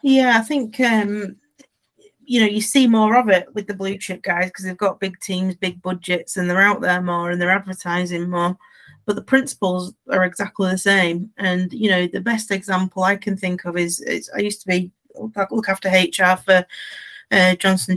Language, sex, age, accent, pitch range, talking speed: English, female, 30-49, British, 180-210 Hz, 205 wpm